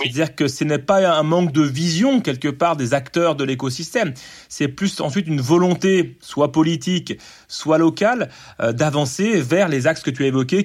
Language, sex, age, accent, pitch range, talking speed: English, male, 30-49, French, 135-180 Hz, 185 wpm